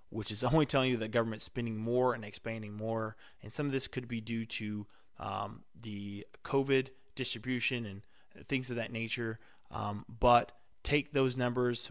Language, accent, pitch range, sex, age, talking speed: English, American, 110-135 Hz, male, 20-39, 170 wpm